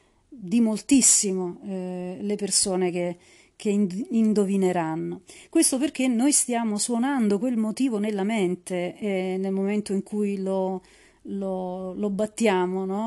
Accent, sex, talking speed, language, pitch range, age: native, female, 125 wpm, Italian, 190-230 Hz, 40-59